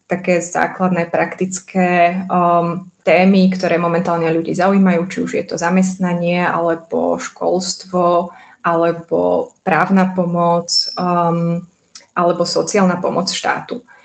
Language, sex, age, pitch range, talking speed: Slovak, female, 20-39, 175-190 Hz, 105 wpm